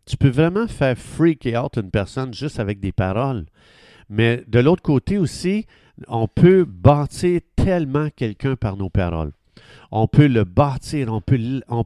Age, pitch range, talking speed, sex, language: 50-69, 105-140 Hz, 160 wpm, male, French